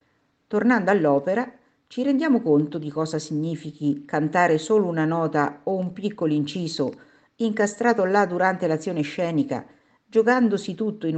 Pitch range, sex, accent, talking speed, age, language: 150-235 Hz, female, native, 130 wpm, 50-69, Italian